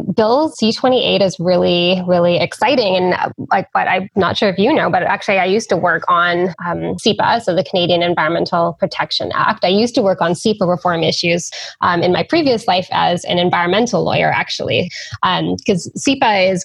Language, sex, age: English, female, 10-29